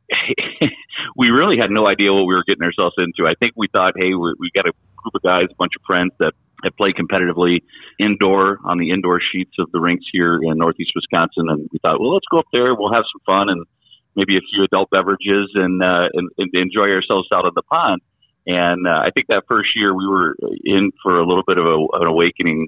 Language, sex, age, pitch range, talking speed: English, male, 40-59, 85-95 Hz, 230 wpm